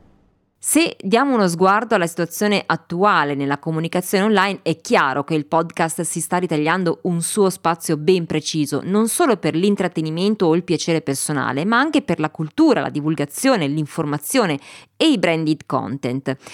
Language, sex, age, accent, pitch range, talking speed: Italian, female, 20-39, native, 160-215 Hz, 155 wpm